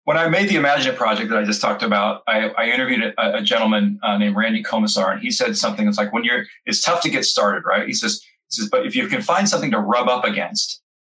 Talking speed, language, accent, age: 265 wpm, English, American, 30-49